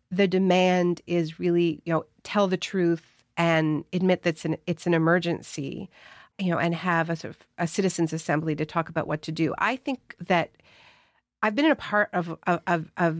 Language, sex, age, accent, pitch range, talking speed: English, female, 40-59, American, 165-195 Hz, 195 wpm